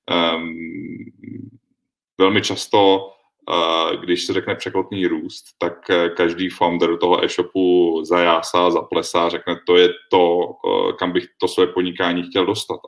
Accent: native